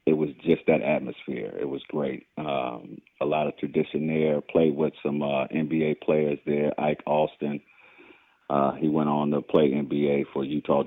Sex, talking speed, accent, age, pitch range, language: male, 175 wpm, American, 40-59, 75-85 Hz, English